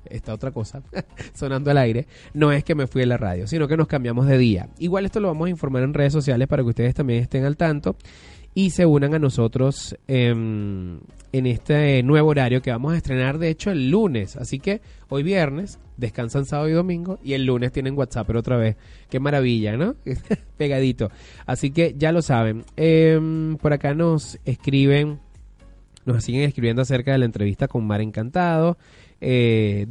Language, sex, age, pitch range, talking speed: Spanish, male, 20-39, 115-150 Hz, 190 wpm